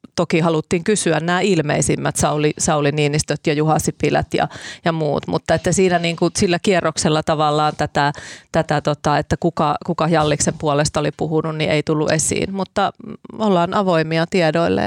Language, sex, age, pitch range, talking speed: Finnish, female, 30-49, 155-175 Hz, 155 wpm